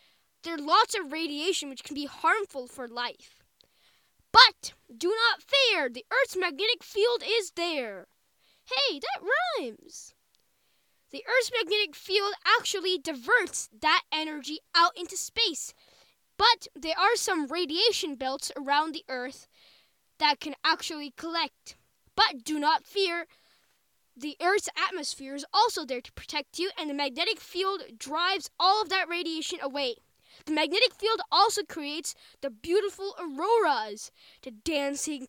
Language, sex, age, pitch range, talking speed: English, female, 10-29, 300-405 Hz, 140 wpm